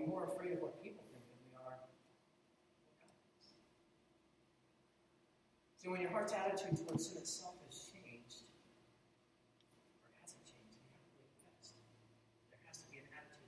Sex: male